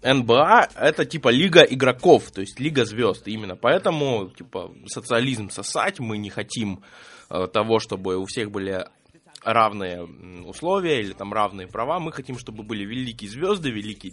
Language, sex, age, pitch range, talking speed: Russian, male, 20-39, 95-130 Hz, 150 wpm